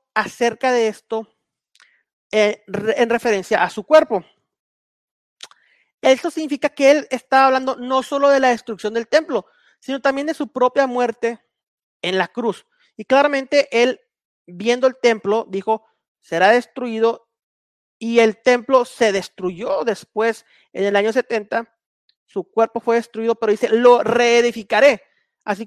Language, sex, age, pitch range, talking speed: Spanish, male, 40-59, 220-275 Hz, 140 wpm